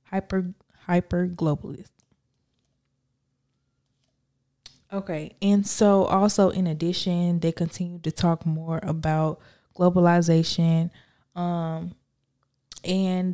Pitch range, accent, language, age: 165-190 Hz, American, English, 20-39